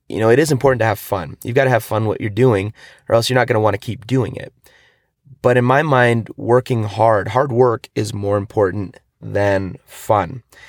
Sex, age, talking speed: male, 30-49, 225 wpm